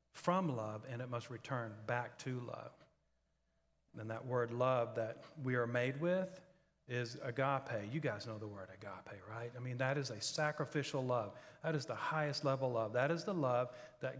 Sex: male